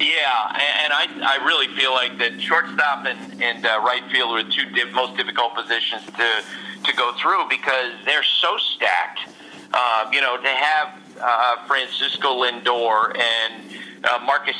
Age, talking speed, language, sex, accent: 50-69, 165 wpm, English, male, American